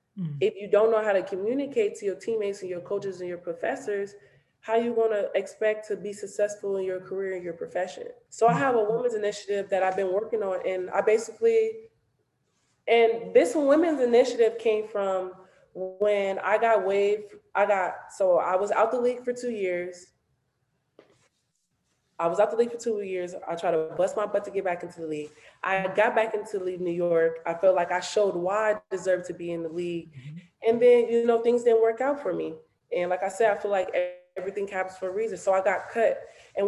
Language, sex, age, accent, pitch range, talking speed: English, female, 20-39, American, 185-220 Hz, 220 wpm